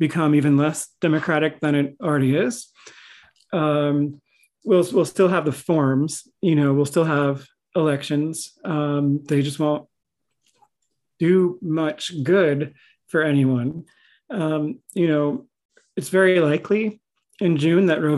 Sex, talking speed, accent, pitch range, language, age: male, 130 wpm, American, 150-180 Hz, English, 40-59